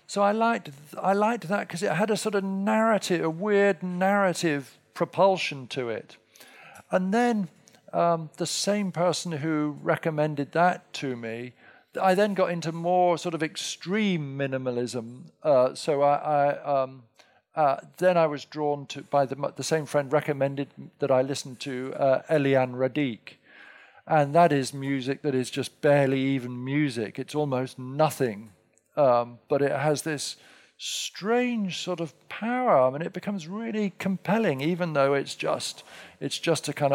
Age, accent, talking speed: 50-69, British, 160 wpm